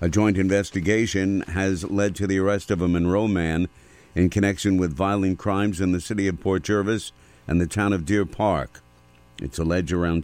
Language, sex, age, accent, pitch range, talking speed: English, male, 50-69, American, 80-95 Hz, 190 wpm